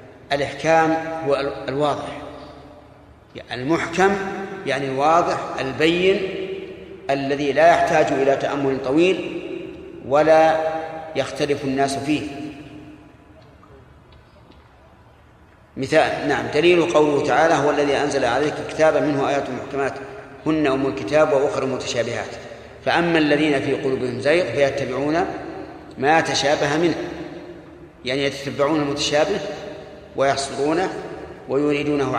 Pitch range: 135-165 Hz